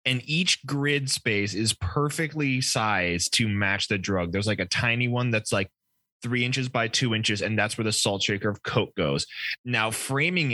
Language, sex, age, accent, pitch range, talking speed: English, male, 20-39, American, 110-140 Hz, 195 wpm